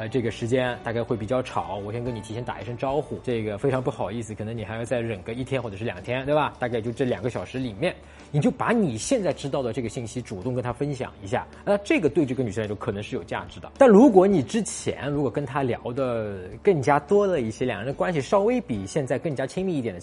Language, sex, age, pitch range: Chinese, male, 20-39, 115-150 Hz